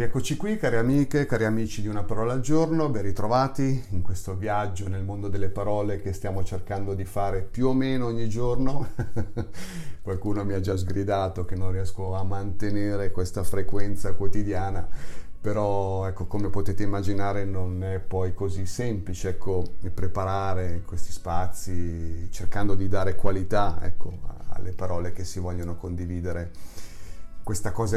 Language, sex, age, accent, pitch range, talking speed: Italian, male, 40-59, native, 90-105 Hz, 150 wpm